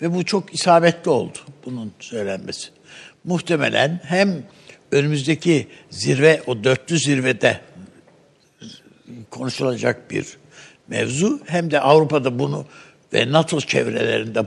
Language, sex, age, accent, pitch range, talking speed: Turkish, male, 60-79, native, 130-175 Hz, 100 wpm